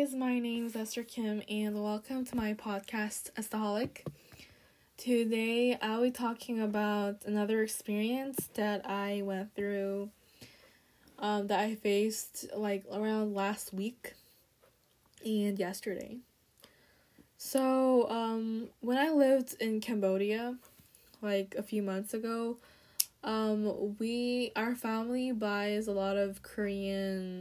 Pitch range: 200-235 Hz